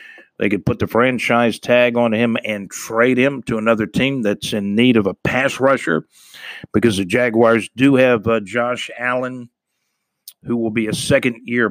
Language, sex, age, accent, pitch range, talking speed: English, male, 50-69, American, 110-130 Hz, 175 wpm